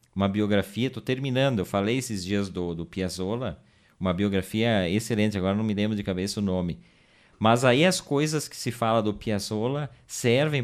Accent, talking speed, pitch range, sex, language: Brazilian, 180 wpm, 90-115 Hz, male, Portuguese